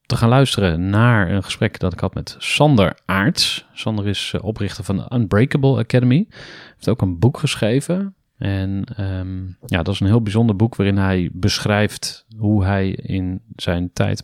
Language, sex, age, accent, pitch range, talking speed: Dutch, male, 30-49, Dutch, 95-120 Hz, 175 wpm